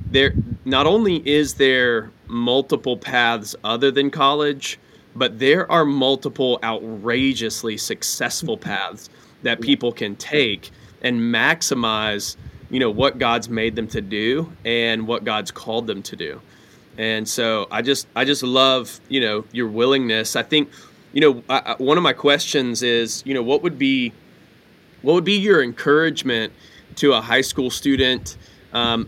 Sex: male